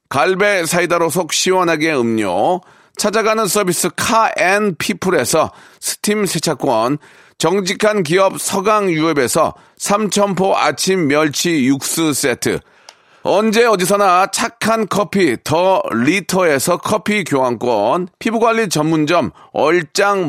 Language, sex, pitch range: Korean, male, 160-200 Hz